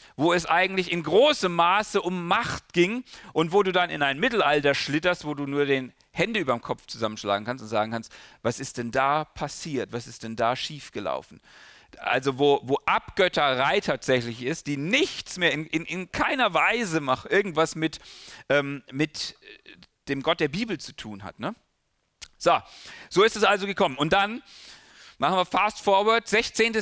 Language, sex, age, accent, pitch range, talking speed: German, male, 40-59, German, 130-190 Hz, 180 wpm